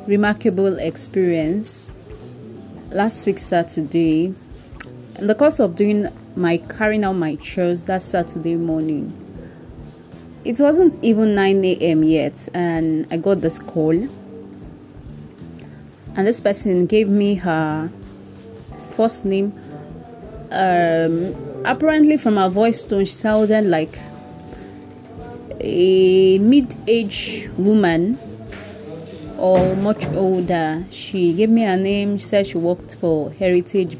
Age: 30-49